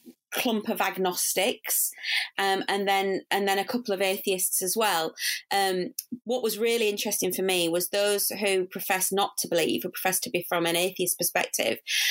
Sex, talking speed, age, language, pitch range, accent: female, 180 wpm, 20-39, English, 175-205 Hz, British